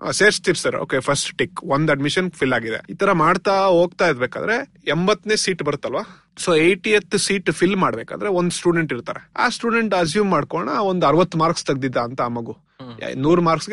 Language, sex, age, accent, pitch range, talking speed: Kannada, male, 30-49, native, 150-185 Hz, 170 wpm